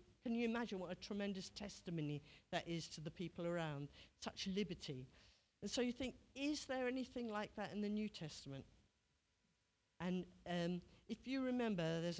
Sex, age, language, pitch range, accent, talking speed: female, 50-69, English, 155-200 Hz, British, 165 wpm